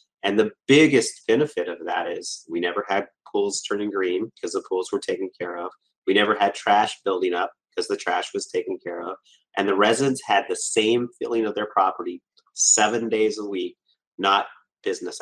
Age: 30-49